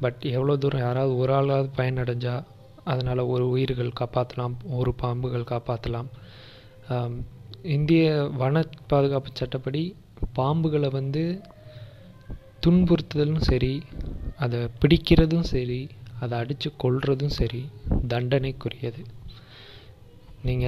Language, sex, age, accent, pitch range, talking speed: Tamil, male, 20-39, native, 120-135 Hz, 90 wpm